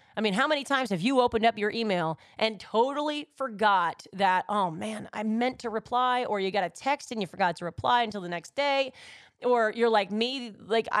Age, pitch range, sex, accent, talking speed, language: 30-49, 190-245 Hz, female, American, 220 wpm, English